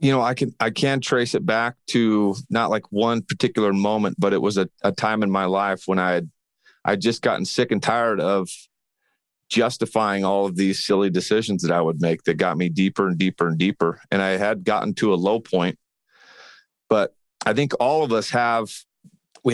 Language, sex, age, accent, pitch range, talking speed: English, male, 40-59, American, 100-125 Hz, 210 wpm